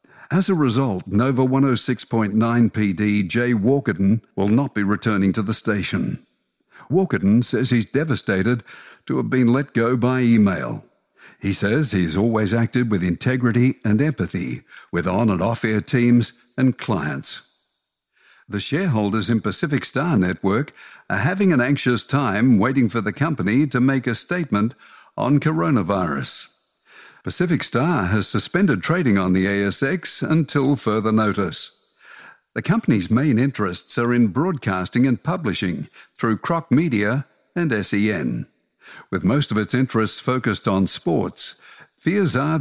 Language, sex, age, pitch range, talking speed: English, male, 60-79, 105-135 Hz, 140 wpm